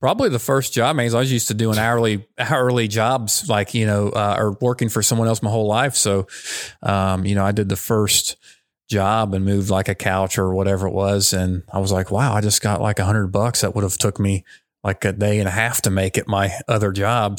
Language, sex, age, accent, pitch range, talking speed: English, male, 30-49, American, 95-110 Hz, 250 wpm